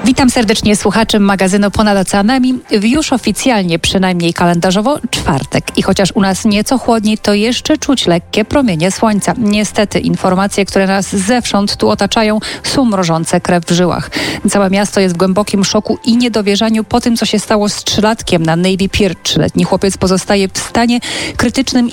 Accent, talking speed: native, 165 wpm